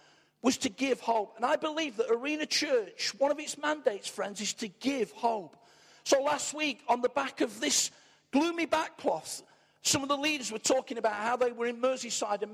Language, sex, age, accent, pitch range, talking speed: English, male, 50-69, British, 220-275 Hz, 200 wpm